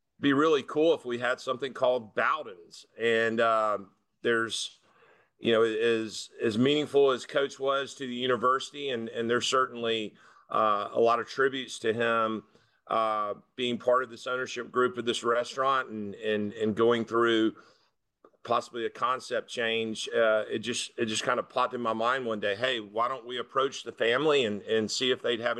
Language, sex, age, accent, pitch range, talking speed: English, male, 40-59, American, 110-130 Hz, 185 wpm